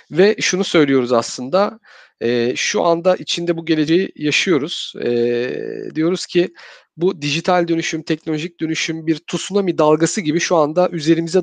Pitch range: 150-185 Hz